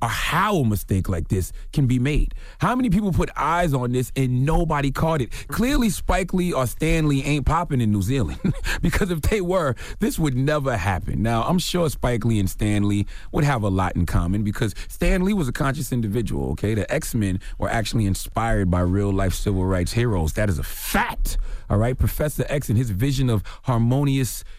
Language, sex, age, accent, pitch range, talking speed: English, male, 30-49, American, 95-135 Hz, 200 wpm